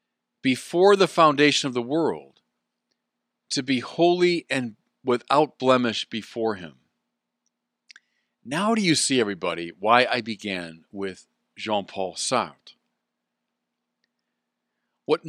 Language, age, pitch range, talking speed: English, 40-59, 110-150 Hz, 100 wpm